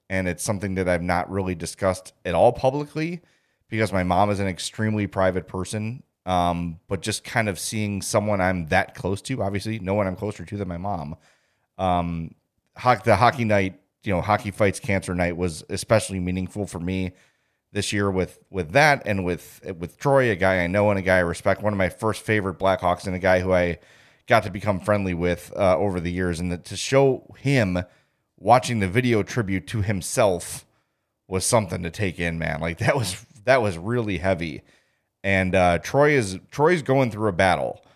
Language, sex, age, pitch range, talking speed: English, male, 30-49, 90-110 Hz, 195 wpm